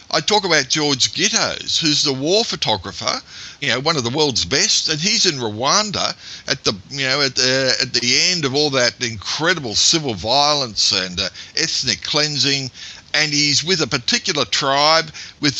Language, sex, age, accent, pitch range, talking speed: English, male, 50-69, Australian, 110-145 Hz, 175 wpm